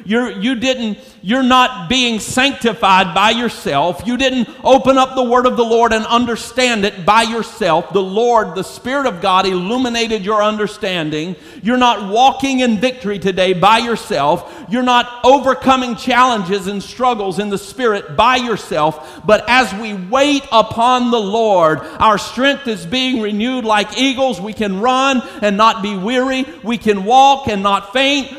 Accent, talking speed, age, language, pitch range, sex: American, 160 wpm, 50-69, English, 205-255 Hz, male